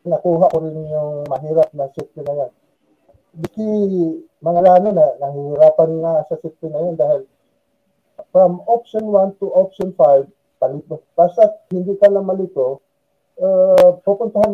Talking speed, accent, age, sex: 130 wpm, Filipino, 50-69, male